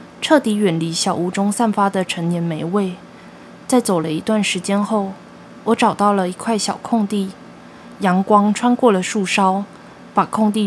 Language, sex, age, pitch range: Chinese, female, 20-39, 190-225 Hz